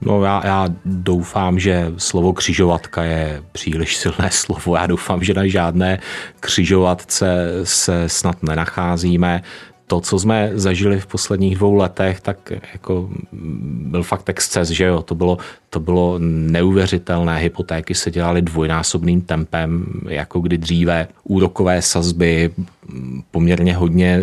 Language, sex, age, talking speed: Czech, male, 30-49, 130 wpm